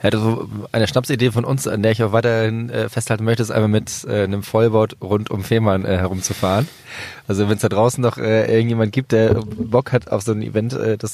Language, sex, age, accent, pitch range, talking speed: German, male, 20-39, German, 100-115 Hz, 230 wpm